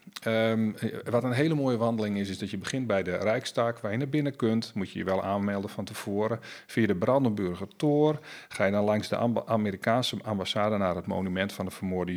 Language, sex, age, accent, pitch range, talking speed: Dutch, male, 40-59, Dutch, 95-115 Hz, 205 wpm